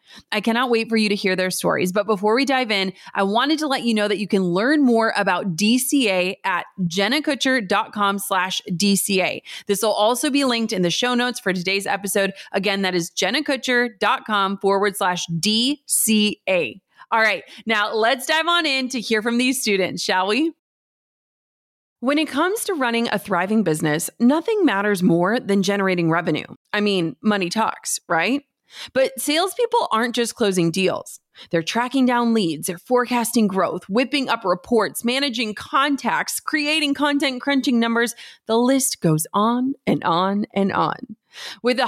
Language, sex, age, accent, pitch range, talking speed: English, female, 30-49, American, 200-260 Hz, 165 wpm